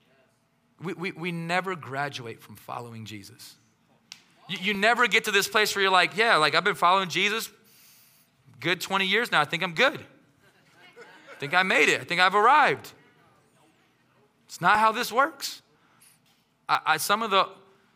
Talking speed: 170 wpm